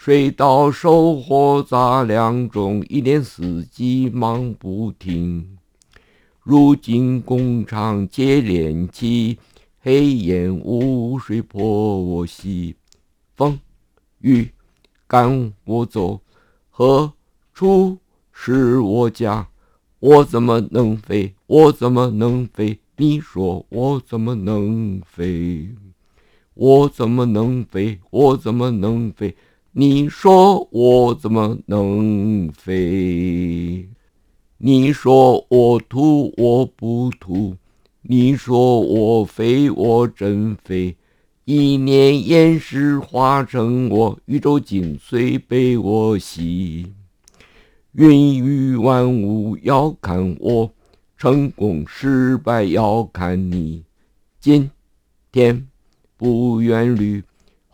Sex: male